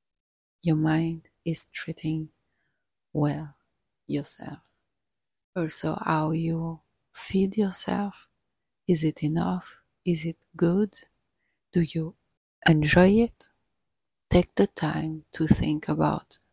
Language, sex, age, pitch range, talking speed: English, female, 30-49, 150-170 Hz, 100 wpm